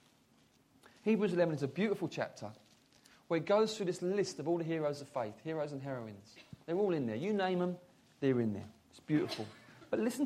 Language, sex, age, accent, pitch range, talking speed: English, male, 40-59, British, 165-260 Hz, 205 wpm